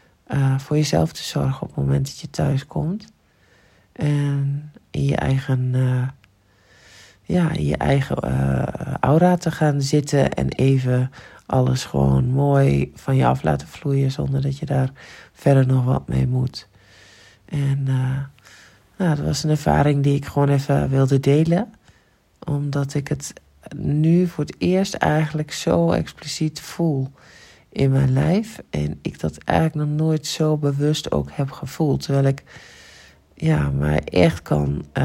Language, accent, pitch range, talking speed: Dutch, Dutch, 120-155 Hz, 140 wpm